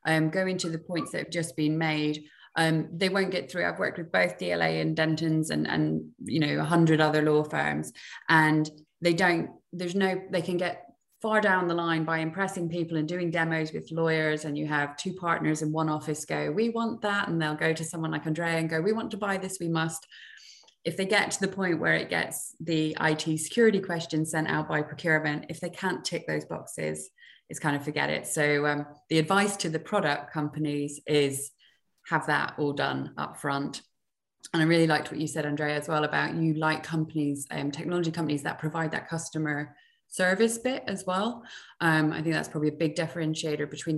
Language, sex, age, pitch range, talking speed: Hungarian, female, 20-39, 150-175 Hz, 215 wpm